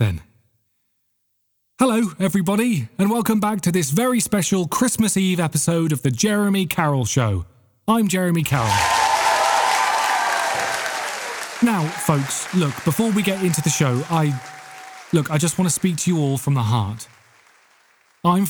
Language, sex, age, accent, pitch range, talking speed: English, male, 20-39, British, 120-185 Hz, 145 wpm